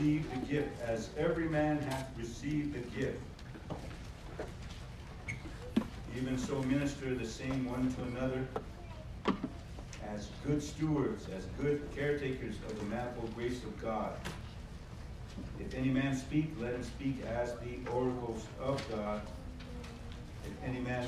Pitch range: 105-130 Hz